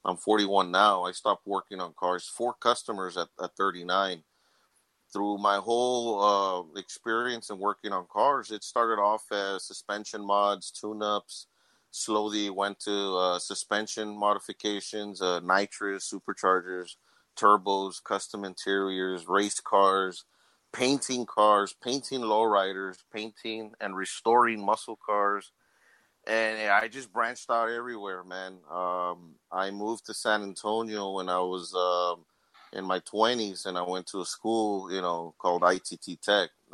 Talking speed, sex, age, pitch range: 135 wpm, male, 30-49, 90-105 Hz